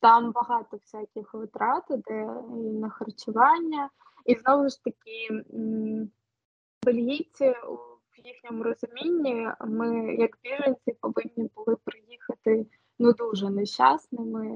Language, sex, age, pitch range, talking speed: Ukrainian, female, 20-39, 220-245 Hz, 100 wpm